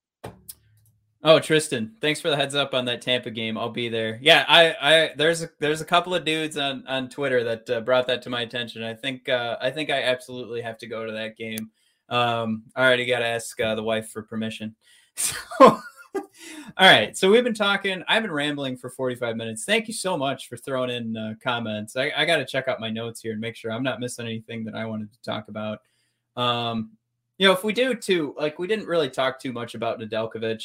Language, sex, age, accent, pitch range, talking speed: English, male, 20-39, American, 115-150 Hz, 235 wpm